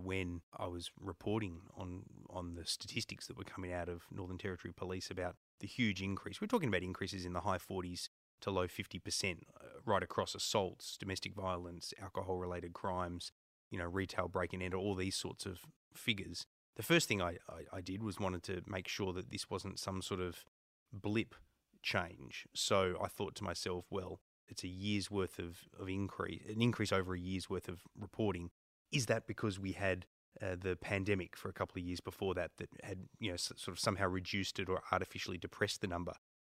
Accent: Australian